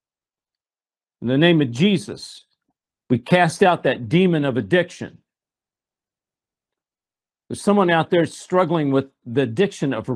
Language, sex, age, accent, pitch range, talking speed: English, male, 50-69, American, 125-170 Hz, 125 wpm